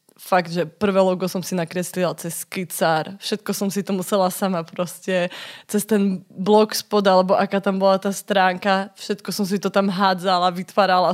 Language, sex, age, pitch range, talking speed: Slovak, female, 20-39, 195-225 Hz, 180 wpm